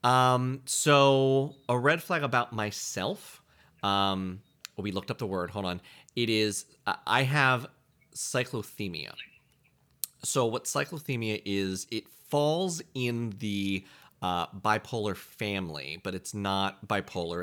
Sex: male